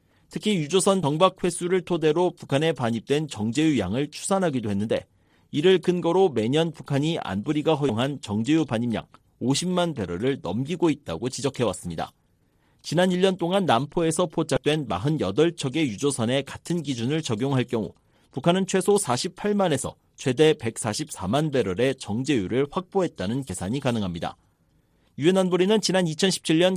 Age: 40-59